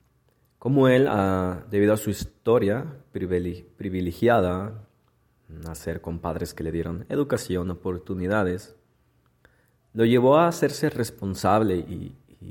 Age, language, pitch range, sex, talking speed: 30-49, Spanish, 85-105 Hz, male, 105 wpm